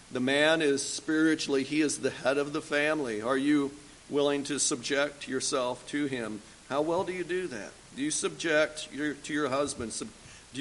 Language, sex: English, male